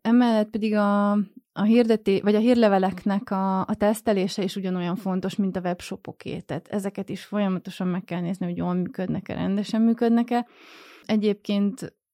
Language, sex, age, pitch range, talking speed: Hungarian, female, 20-39, 185-215 Hz, 145 wpm